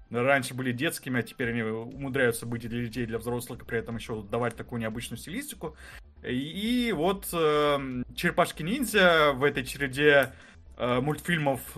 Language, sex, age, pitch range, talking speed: Russian, male, 20-39, 120-155 Hz, 160 wpm